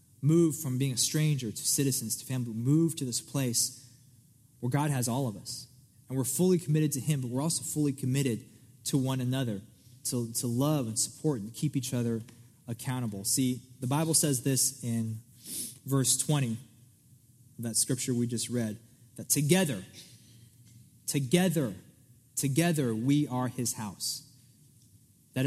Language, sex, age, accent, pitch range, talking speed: English, male, 20-39, American, 125-150 Hz, 155 wpm